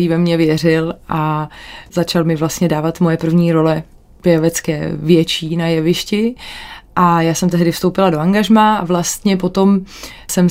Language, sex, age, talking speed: Czech, female, 20-39, 150 wpm